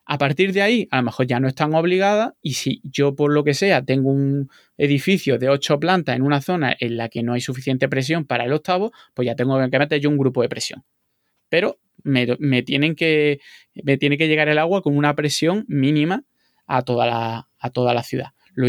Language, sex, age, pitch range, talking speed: Spanish, male, 20-39, 125-150 Hz, 210 wpm